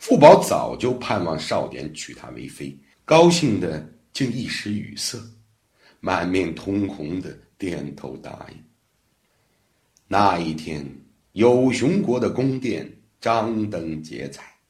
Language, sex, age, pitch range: Chinese, male, 60-79, 80-115 Hz